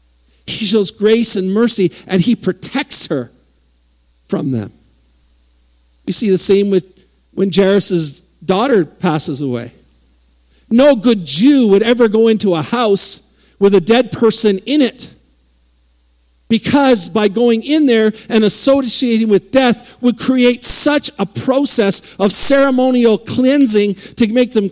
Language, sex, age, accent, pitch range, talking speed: English, male, 50-69, American, 180-245 Hz, 135 wpm